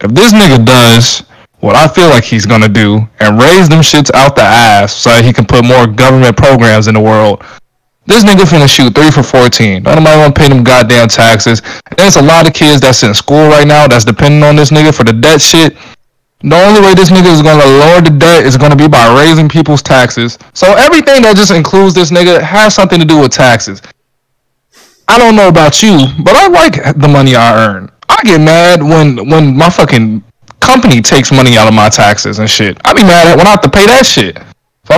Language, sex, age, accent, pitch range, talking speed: English, male, 20-39, American, 125-170 Hz, 225 wpm